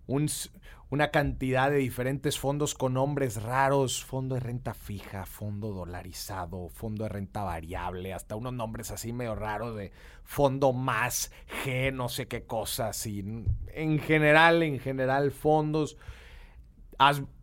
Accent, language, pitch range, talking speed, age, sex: Mexican, Spanish, 115-175 Hz, 140 wpm, 30-49, male